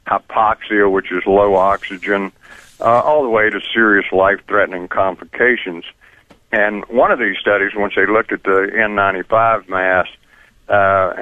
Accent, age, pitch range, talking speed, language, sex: American, 60-79, 95-110 Hz, 140 wpm, English, male